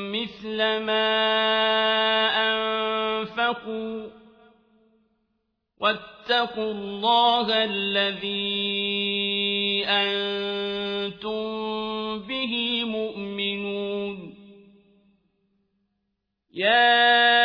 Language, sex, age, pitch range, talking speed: Arabic, male, 50-69, 215-235 Hz, 35 wpm